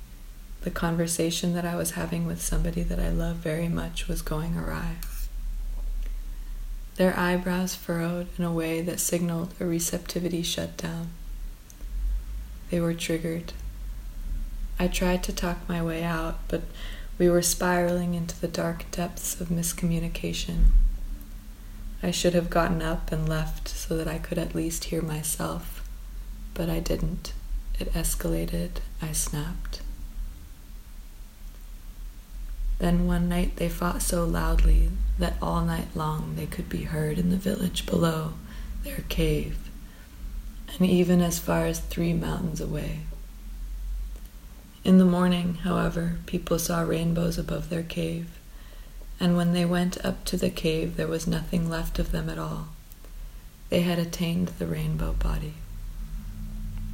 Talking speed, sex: 135 wpm, female